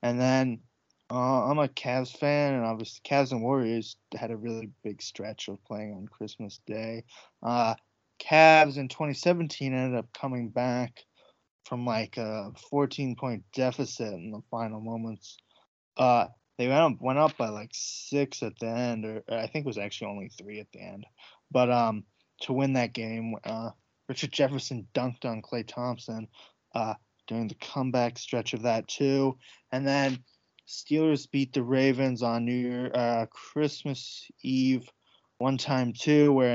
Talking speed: 160 wpm